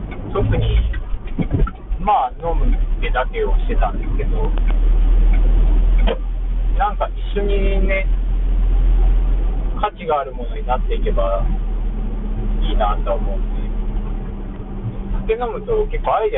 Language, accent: Japanese, native